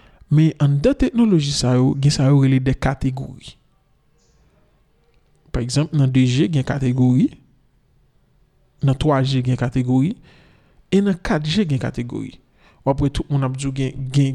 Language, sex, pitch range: French, male, 135-165 Hz